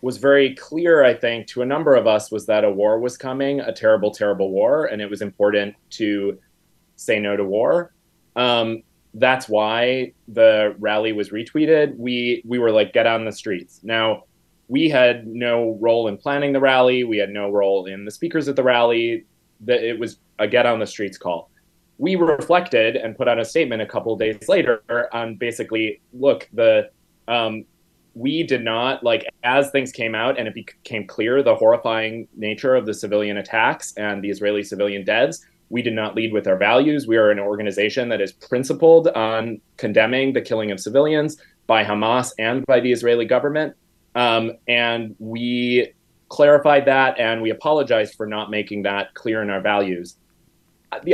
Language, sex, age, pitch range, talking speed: English, male, 20-39, 105-135 Hz, 185 wpm